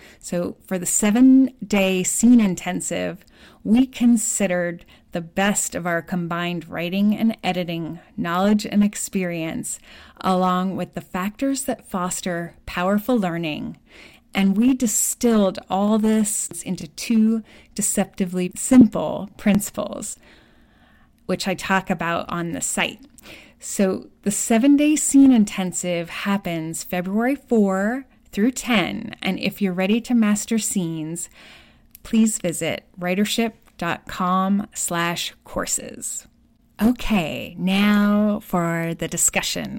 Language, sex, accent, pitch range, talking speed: English, female, American, 175-215 Hz, 110 wpm